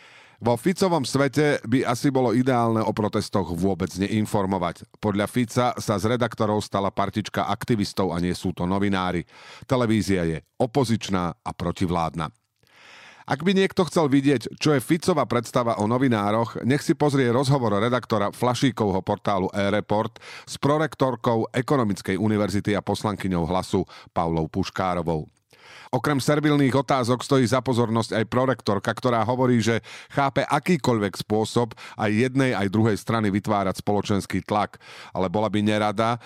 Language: Slovak